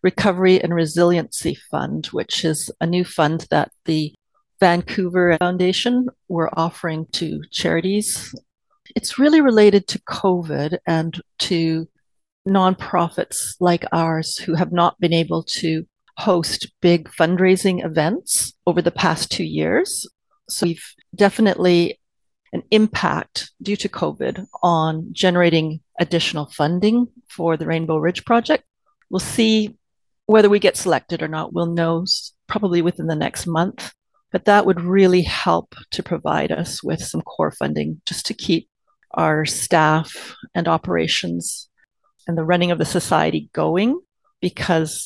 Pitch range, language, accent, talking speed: 160-200 Hz, English, American, 135 wpm